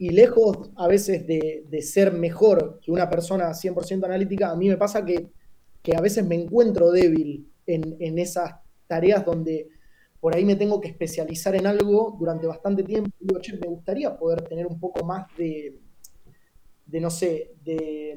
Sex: male